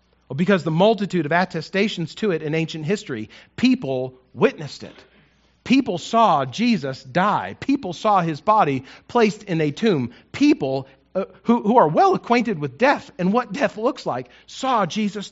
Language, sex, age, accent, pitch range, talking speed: English, male, 40-59, American, 155-210 Hz, 160 wpm